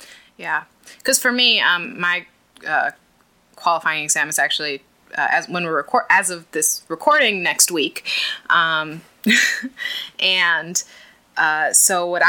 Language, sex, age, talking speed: English, female, 20-39, 130 wpm